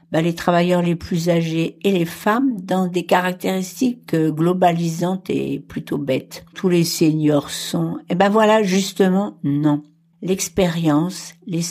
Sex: female